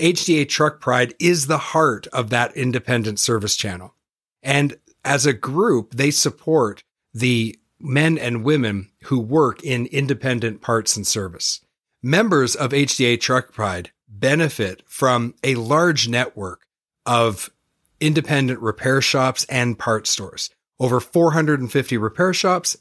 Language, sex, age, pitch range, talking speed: English, male, 40-59, 115-145 Hz, 130 wpm